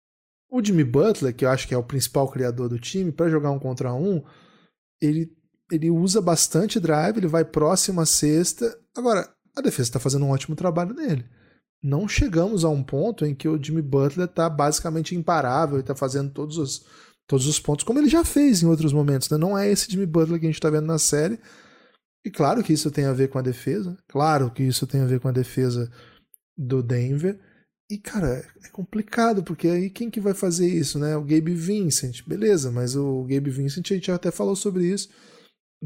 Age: 20-39